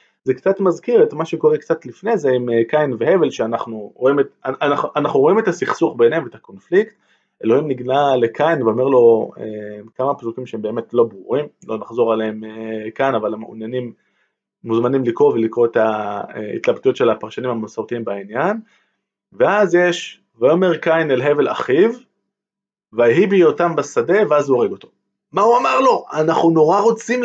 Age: 20-39